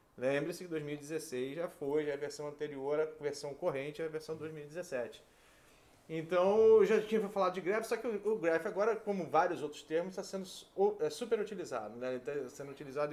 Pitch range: 150-205 Hz